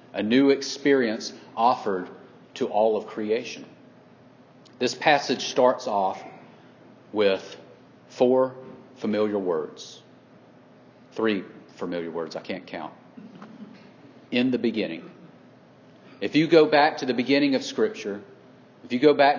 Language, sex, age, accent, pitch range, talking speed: English, male, 40-59, American, 125-170 Hz, 120 wpm